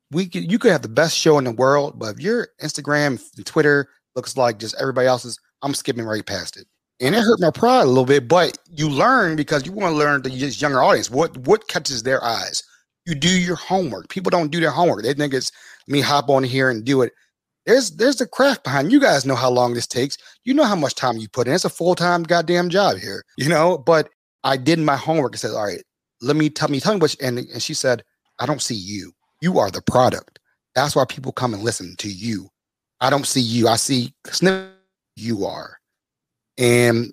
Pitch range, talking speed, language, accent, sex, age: 120-165 Hz, 235 wpm, English, American, male, 30-49